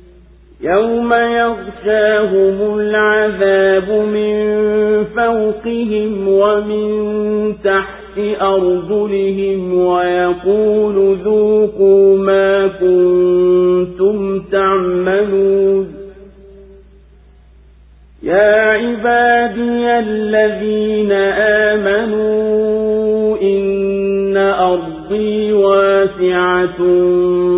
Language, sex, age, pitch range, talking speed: Swahili, male, 40-59, 185-215 Hz, 45 wpm